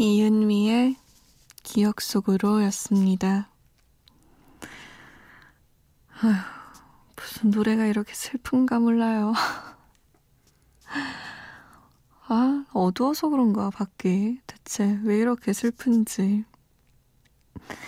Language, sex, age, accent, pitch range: Korean, female, 20-39, native, 200-245 Hz